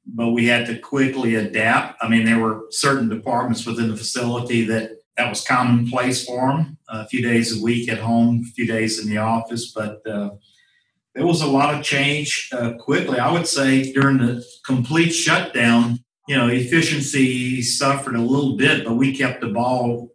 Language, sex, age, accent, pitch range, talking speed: English, male, 50-69, American, 110-130 Hz, 190 wpm